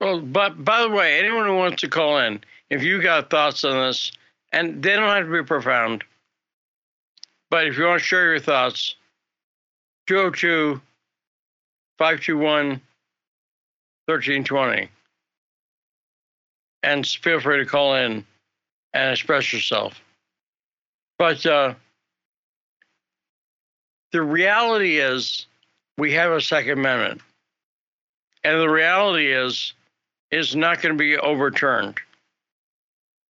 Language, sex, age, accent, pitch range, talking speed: English, male, 60-79, American, 140-170 Hz, 110 wpm